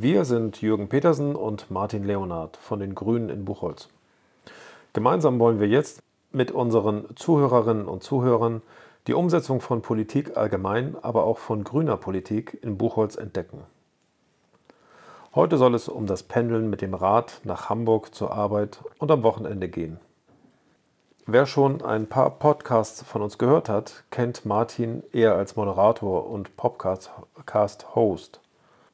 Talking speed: 140 wpm